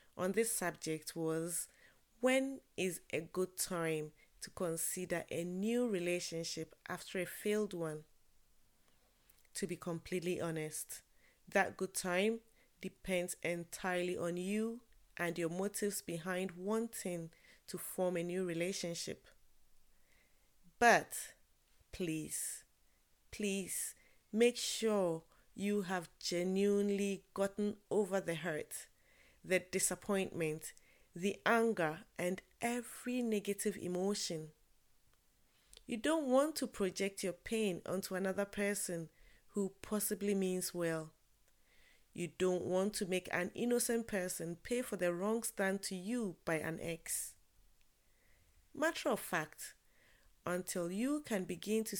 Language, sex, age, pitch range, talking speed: English, female, 30-49, 170-210 Hz, 115 wpm